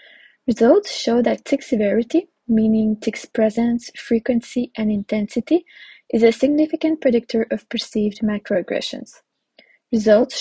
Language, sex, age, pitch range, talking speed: English, female, 20-39, 220-275 Hz, 110 wpm